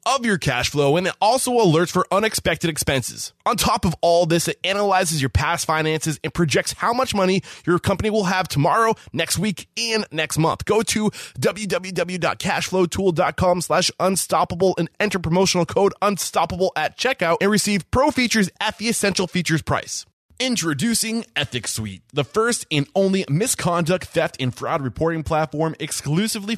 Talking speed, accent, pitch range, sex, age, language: 160 wpm, American, 135-190 Hz, male, 20-39, English